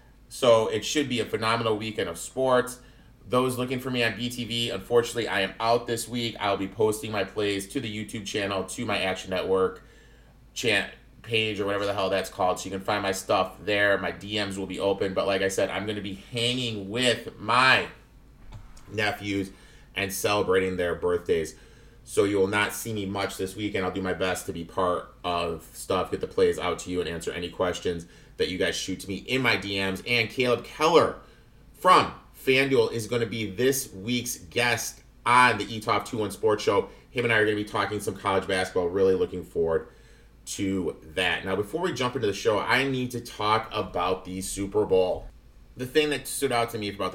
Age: 30-49